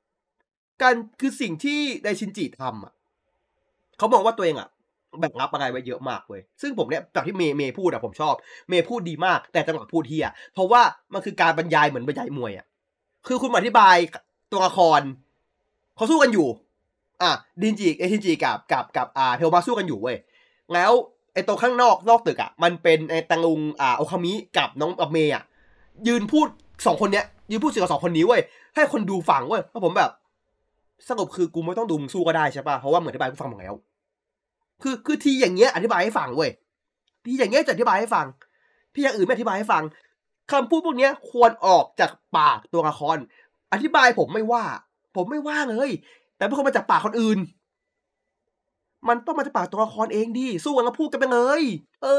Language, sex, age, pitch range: Thai, male, 20-39, 175-280 Hz